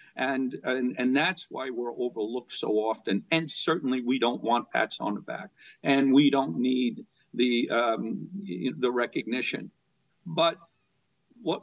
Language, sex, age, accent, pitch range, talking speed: English, male, 50-69, American, 130-175 Hz, 145 wpm